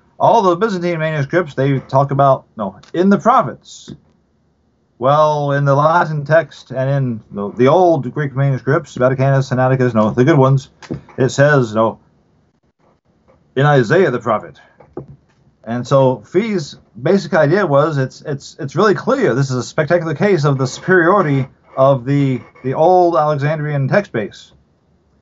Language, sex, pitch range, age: English, male, 130-170 Hz, 40-59